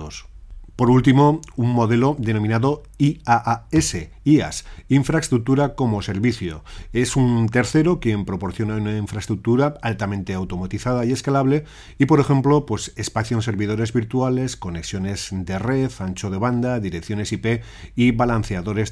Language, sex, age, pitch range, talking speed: Spanish, male, 40-59, 100-125 Hz, 120 wpm